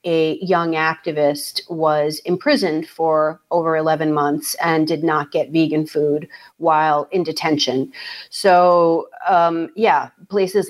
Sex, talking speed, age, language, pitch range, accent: female, 125 wpm, 40-59, English, 155-185 Hz, American